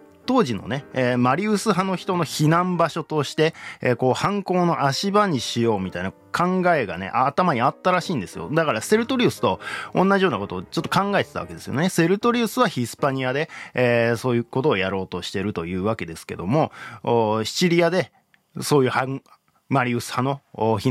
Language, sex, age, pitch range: Japanese, male, 20-39, 110-175 Hz